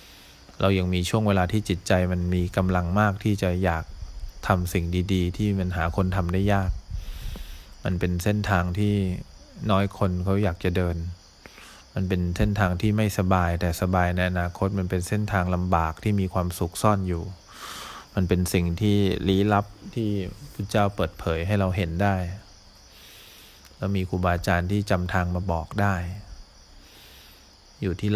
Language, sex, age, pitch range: English, male, 20-39, 90-100 Hz